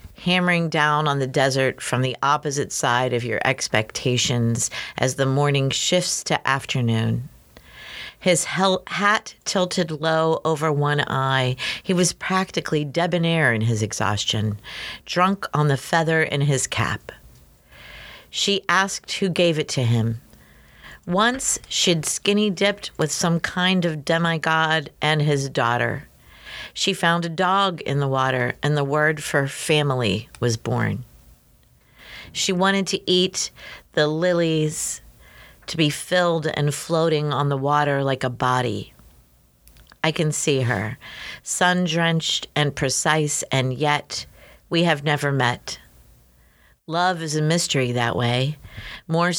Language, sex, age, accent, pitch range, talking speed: English, female, 50-69, American, 130-170 Hz, 130 wpm